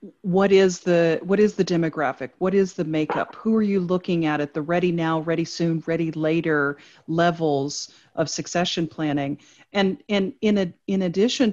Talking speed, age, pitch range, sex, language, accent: 170 wpm, 40-59, 160-195 Hz, female, English, American